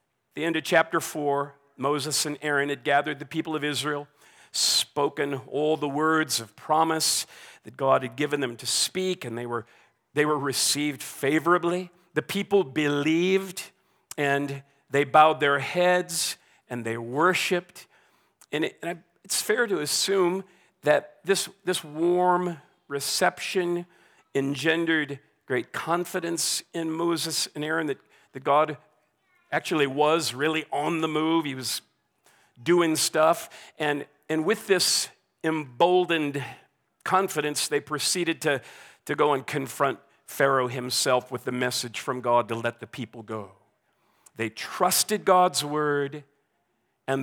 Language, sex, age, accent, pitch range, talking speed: English, male, 50-69, American, 135-170 Hz, 135 wpm